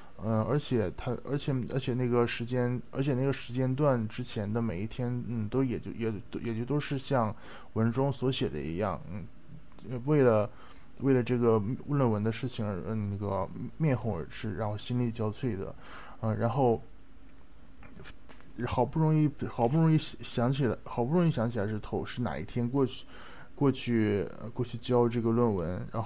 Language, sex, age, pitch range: Japanese, male, 20-39, 110-130 Hz